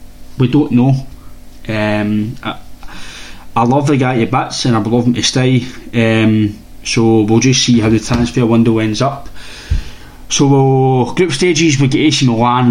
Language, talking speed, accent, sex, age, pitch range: English, 160 wpm, British, male, 20-39, 110-130 Hz